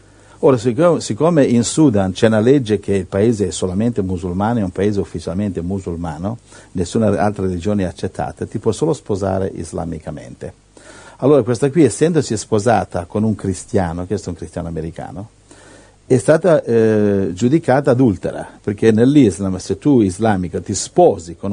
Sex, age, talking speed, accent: male, 50-69, 150 wpm, native